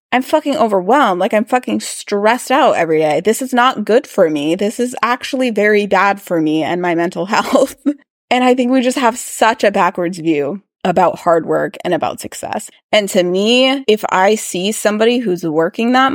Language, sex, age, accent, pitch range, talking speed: English, female, 20-39, American, 180-240 Hz, 195 wpm